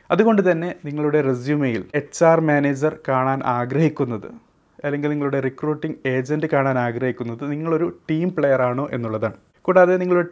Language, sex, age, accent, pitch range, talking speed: Malayalam, male, 30-49, native, 130-160 Hz, 130 wpm